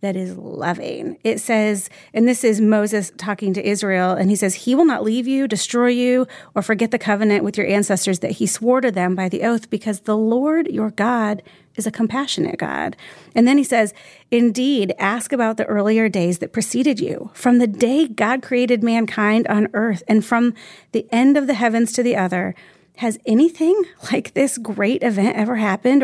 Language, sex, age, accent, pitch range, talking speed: English, female, 30-49, American, 205-250 Hz, 195 wpm